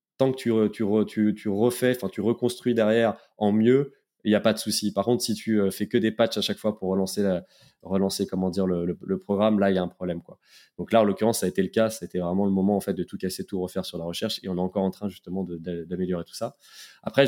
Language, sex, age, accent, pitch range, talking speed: French, male, 20-39, French, 95-115 Hz, 295 wpm